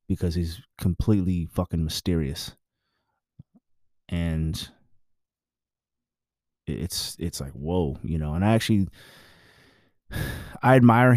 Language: English